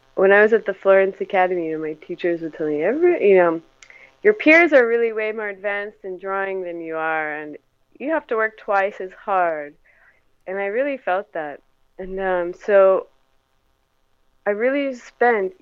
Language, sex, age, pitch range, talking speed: English, female, 20-39, 165-210 Hz, 185 wpm